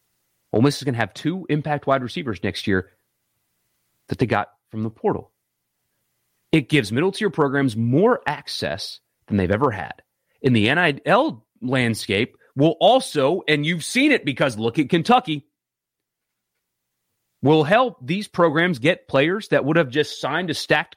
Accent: American